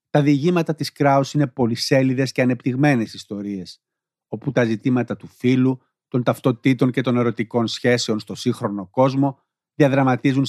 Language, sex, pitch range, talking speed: Greek, male, 120-145 Hz, 135 wpm